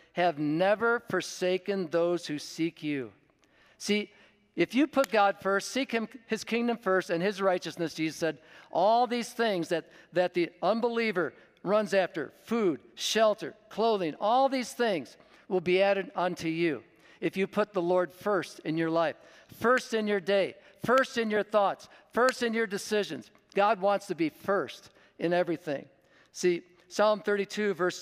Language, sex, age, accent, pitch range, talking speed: English, male, 50-69, American, 170-205 Hz, 160 wpm